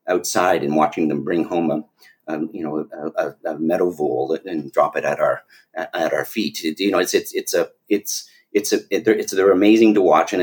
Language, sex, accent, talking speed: English, male, American, 220 wpm